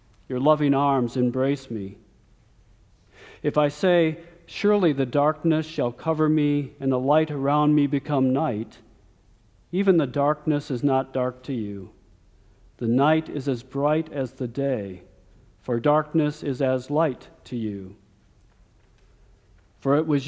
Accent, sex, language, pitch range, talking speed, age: American, male, English, 105-150 Hz, 140 wpm, 50-69